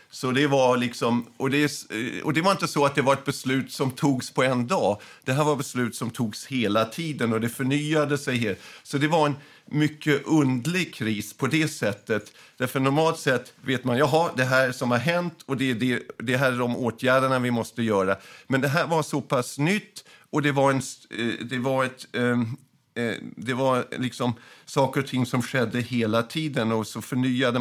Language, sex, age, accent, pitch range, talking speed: Swedish, male, 50-69, native, 115-135 Hz, 205 wpm